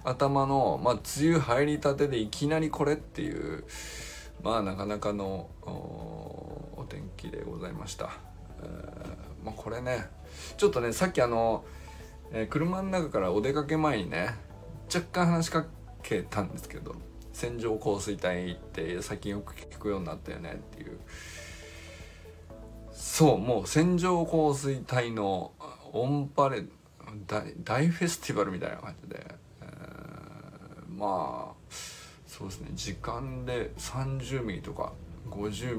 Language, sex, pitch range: Japanese, male, 90-140 Hz